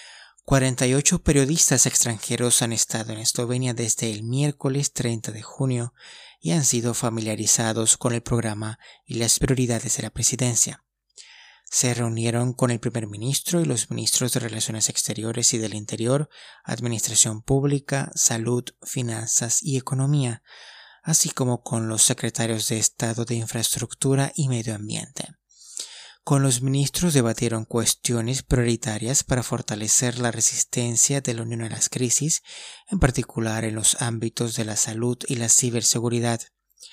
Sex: male